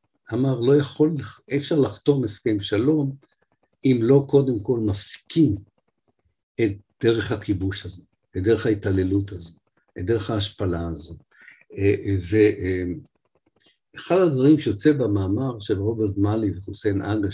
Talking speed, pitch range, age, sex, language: 115 wpm, 100-145 Hz, 50-69, male, Hebrew